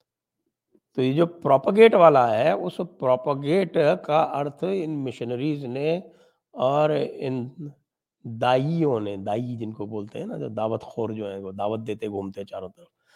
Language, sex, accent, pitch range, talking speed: English, male, Indian, 110-145 Hz, 150 wpm